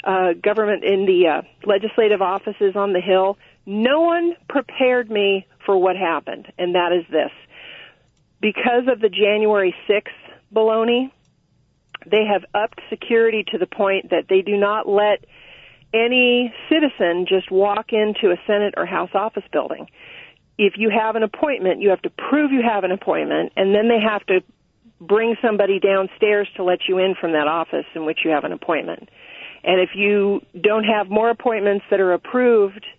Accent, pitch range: American, 190-225 Hz